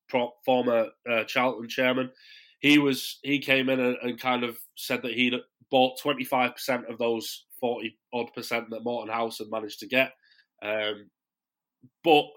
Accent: British